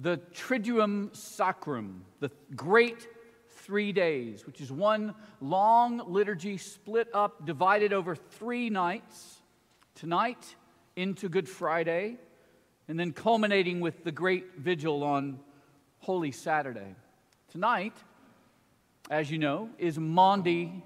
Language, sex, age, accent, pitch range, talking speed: English, male, 50-69, American, 155-200 Hz, 110 wpm